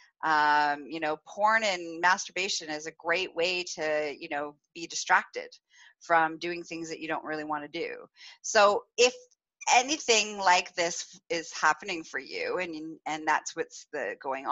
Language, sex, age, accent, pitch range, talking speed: English, female, 30-49, American, 165-235 Hz, 165 wpm